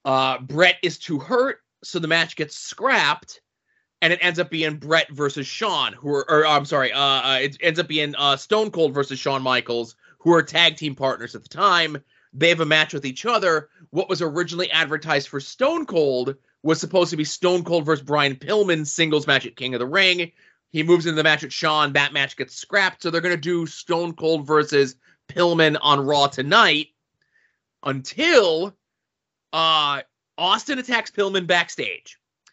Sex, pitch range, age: male, 145-180 Hz, 30-49